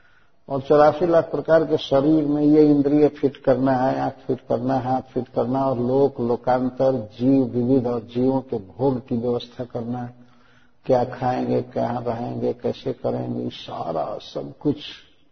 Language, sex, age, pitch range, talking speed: Hindi, male, 50-69, 125-150 Hz, 165 wpm